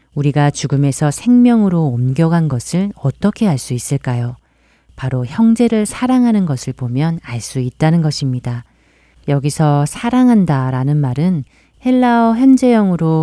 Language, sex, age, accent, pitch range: Korean, female, 40-59, native, 130-175 Hz